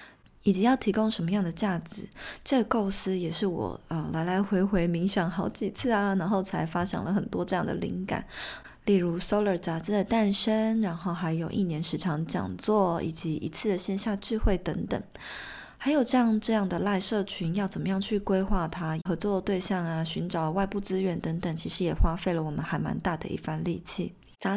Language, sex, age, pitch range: Chinese, female, 20-39, 175-215 Hz